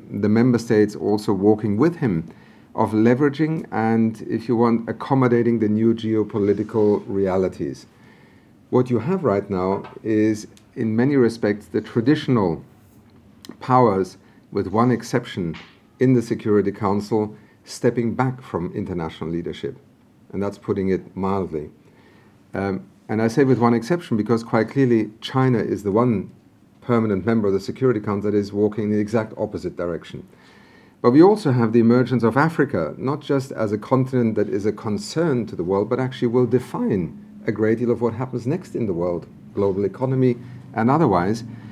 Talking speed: 165 wpm